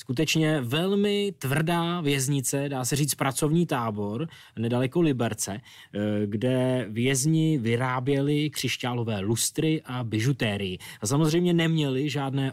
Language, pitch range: Czech, 115-145 Hz